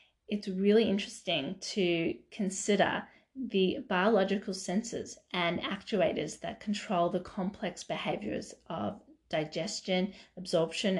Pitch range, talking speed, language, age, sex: 170-210 Hz, 100 wpm, English, 30-49, female